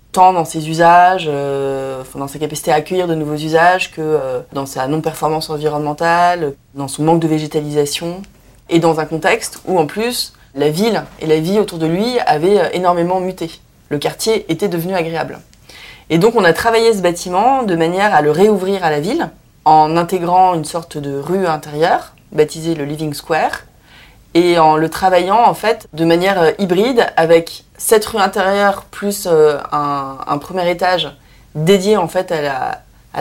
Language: French